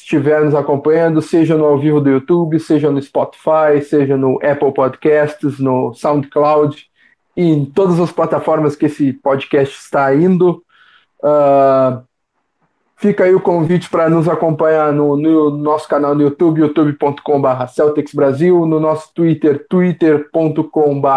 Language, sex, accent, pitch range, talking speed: Portuguese, male, Brazilian, 145-165 Hz, 140 wpm